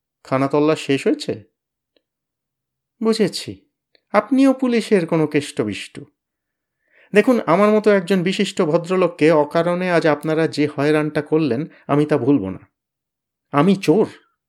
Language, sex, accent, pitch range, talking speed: Bengali, male, native, 130-175 Hz, 110 wpm